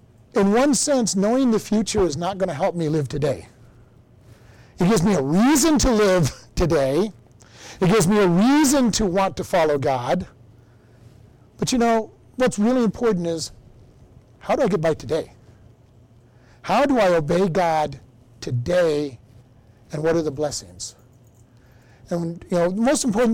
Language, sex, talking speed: English, male, 160 wpm